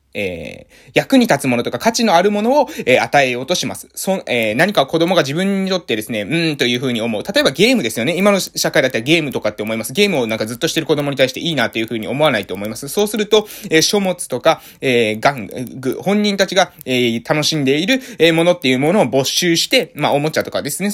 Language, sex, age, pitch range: Japanese, male, 20-39, 145-210 Hz